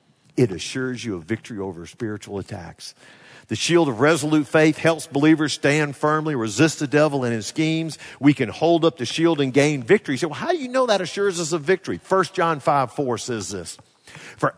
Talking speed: 200 wpm